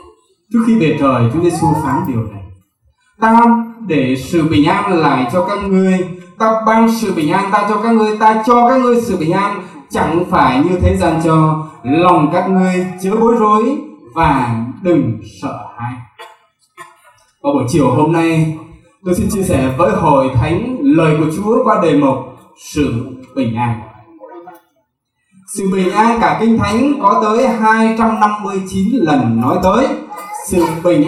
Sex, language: male, Vietnamese